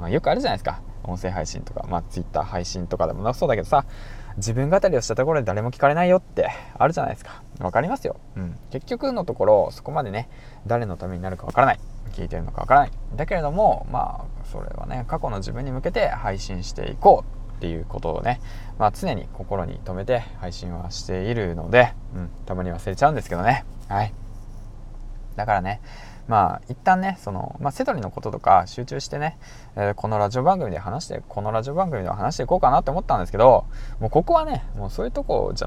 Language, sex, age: Japanese, male, 20-39